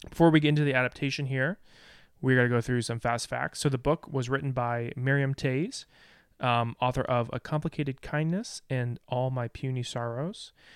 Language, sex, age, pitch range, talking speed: English, male, 20-39, 120-140 Hz, 190 wpm